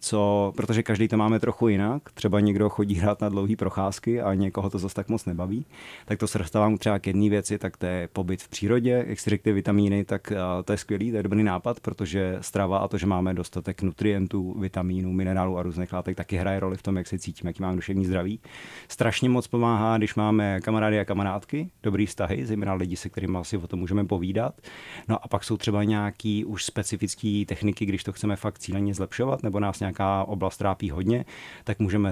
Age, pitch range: 30-49, 95-105 Hz